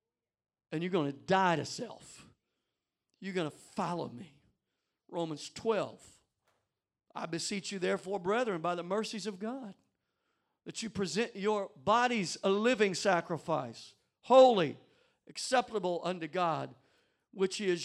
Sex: male